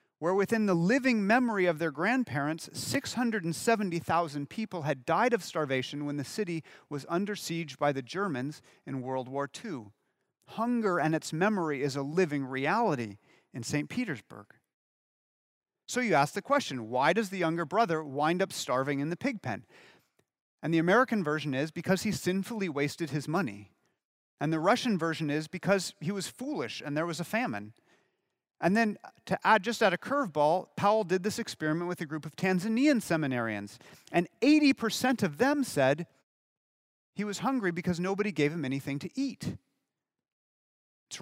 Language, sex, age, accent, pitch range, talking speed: English, male, 40-59, American, 150-215 Hz, 165 wpm